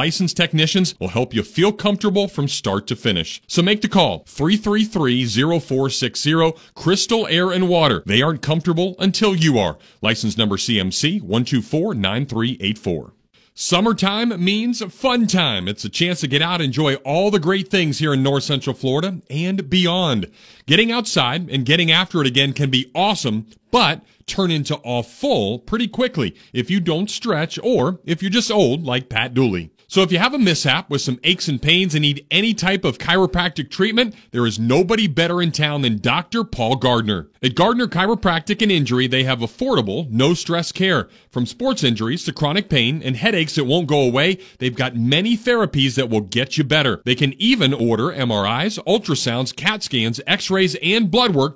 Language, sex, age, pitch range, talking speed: English, male, 40-59, 130-190 Hz, 180 wpm